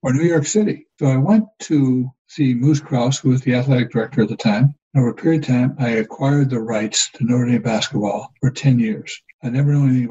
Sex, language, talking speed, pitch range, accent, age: male, English, 230 wpm, 120-150 Hz, American, 60-79